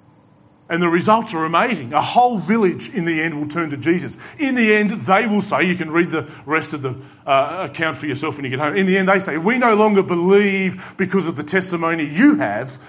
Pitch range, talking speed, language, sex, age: 125-170 Hz, 240 wpm, English, male, 40-59